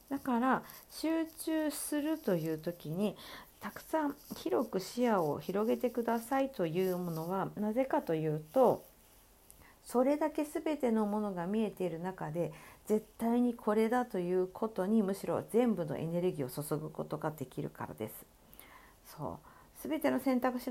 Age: 50-69